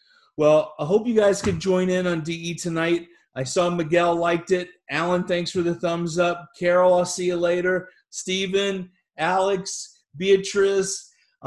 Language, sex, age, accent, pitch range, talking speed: English, male, 30-49, American, 155-200 Hz, 155 wpm